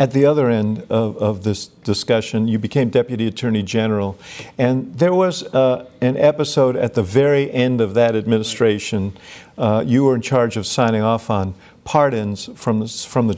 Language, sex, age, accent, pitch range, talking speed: English, male, 50-69, American, 110-130 Hz, 175 wpm